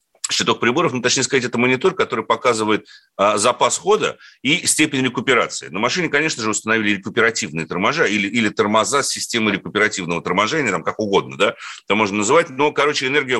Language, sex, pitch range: Russian, male, 135-190 Hz